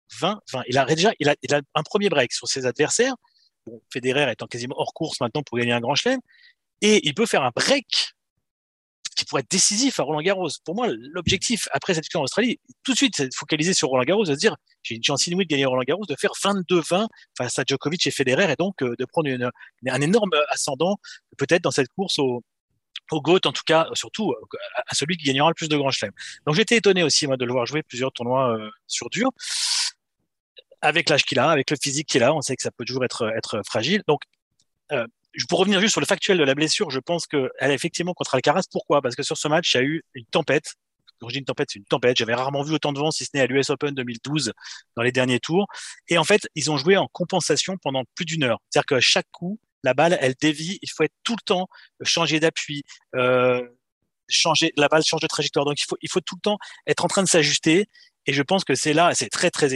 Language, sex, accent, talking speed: French, male, French, 250 wpm